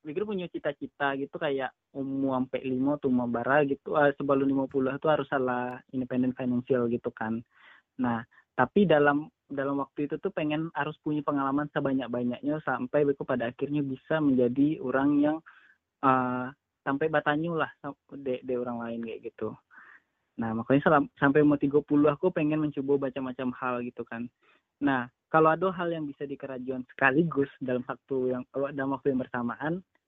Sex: male